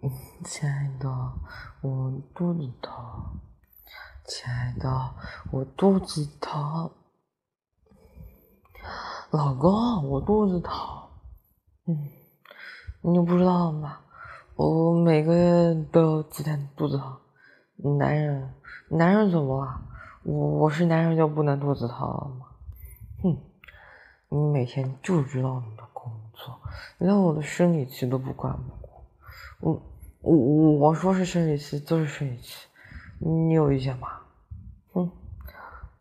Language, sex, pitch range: Chinese, female, 135-165 Hz